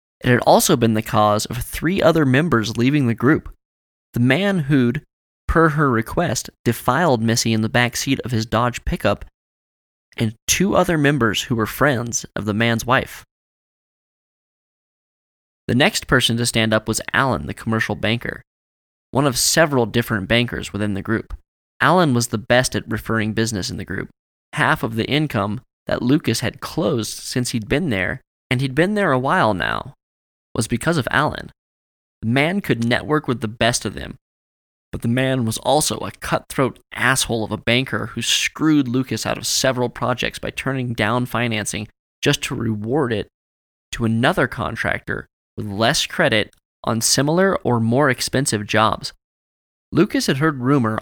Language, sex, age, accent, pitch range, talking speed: English, male, 20-39, American, 105-135 Hz, 170 wpm